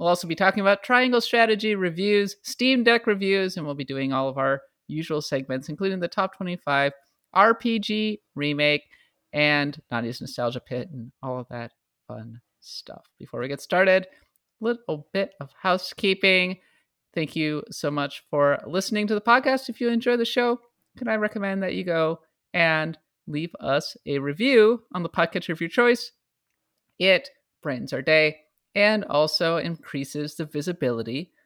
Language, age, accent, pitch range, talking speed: English, 30-49, American, 145-205 Hz, 160 wpm